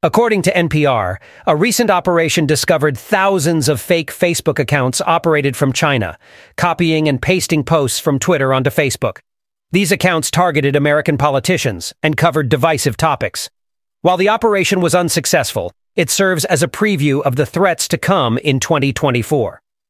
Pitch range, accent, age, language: 140-175 Hz, American, 40-59, English